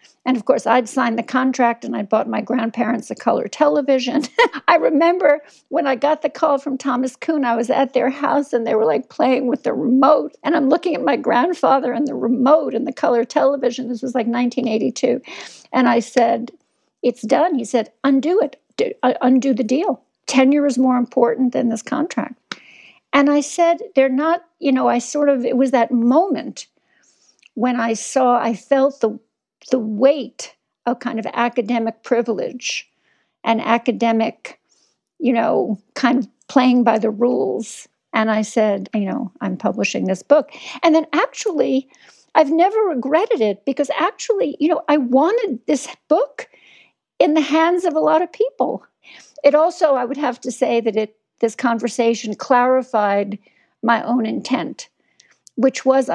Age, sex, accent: 50-69, female, American